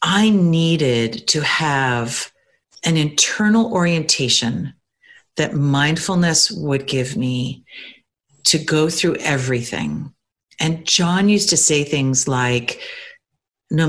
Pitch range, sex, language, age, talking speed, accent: 130-175 Hz, female, English, 50-69, 105 wpm, American